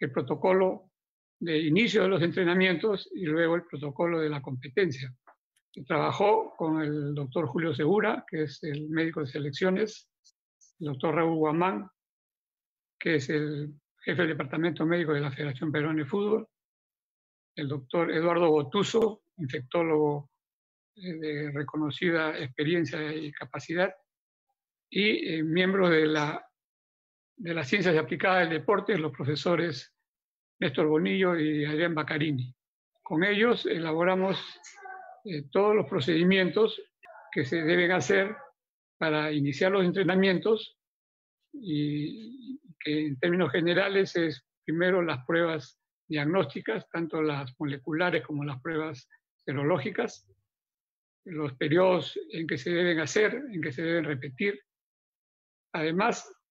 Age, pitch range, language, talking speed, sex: 60-79, 150-185 Hz, Spanish, 125 wpm, male